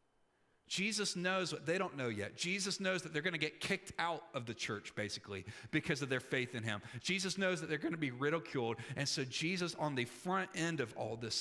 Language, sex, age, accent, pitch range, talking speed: English, male, 40-59, American, 115-175 Hz, 230 wpm